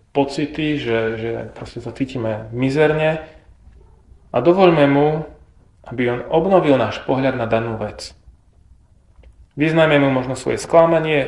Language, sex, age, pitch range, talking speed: Slovak, male, 30-49, 110-155 Hz, 115 wpm